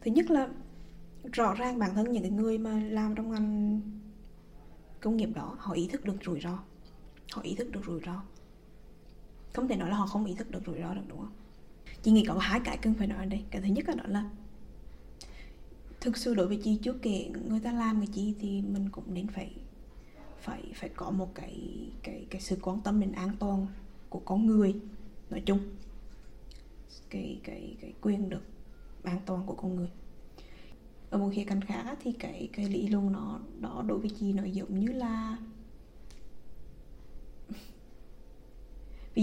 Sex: female